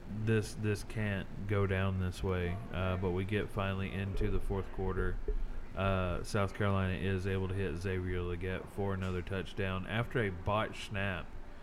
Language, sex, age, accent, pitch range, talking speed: English, male, 30-49, American, 90-100 Hz, 165 wpm